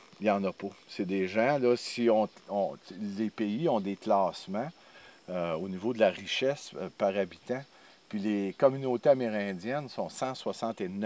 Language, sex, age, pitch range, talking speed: French, male, 50-69, 100-130 Hz, 175 wpm